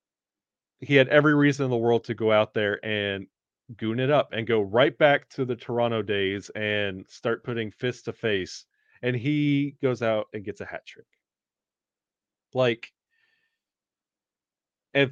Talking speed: 160 wpm